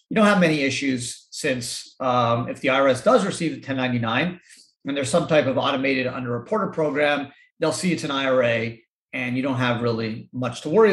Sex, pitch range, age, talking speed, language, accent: male, 125-165 Hz, 40-59, 190 wpm, English, American